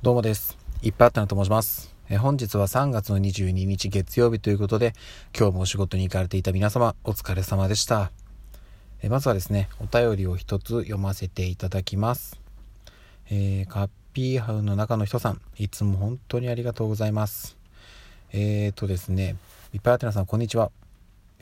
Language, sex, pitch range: Japanese, male, 95-115 Hz